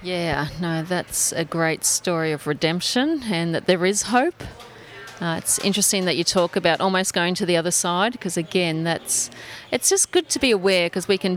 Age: 30-49